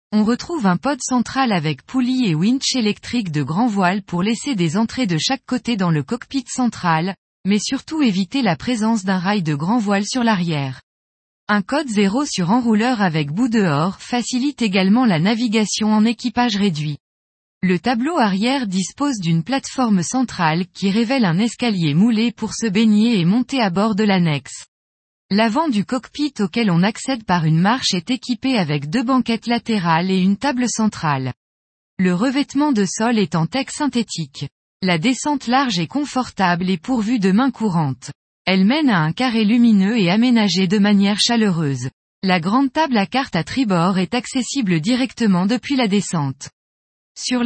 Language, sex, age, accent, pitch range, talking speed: French, female, 20-39, French, 180-250 Hz, 170 wpm